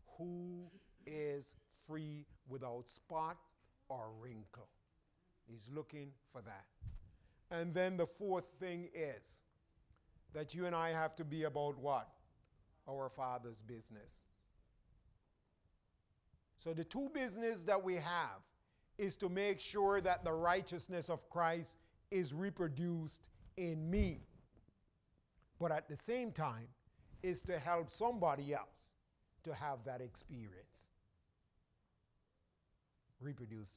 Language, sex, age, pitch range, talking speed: English, male, 50-69, 120-180 Hz, 115 wpm